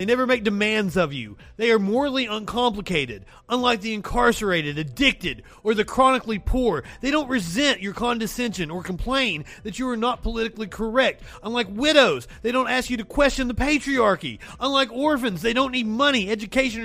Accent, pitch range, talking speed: American, 200-255 Hz, 170 wpm